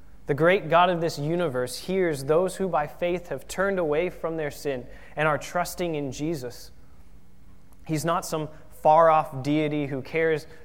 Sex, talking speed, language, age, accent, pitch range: male, 165 wpm, English, 20-39, American, 125-155 Hz